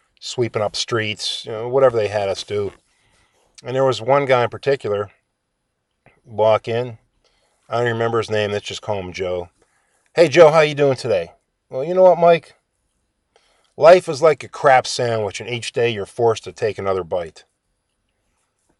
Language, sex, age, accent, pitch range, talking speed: English, male, 50-69, American, 110-140 Hz, 185 wpm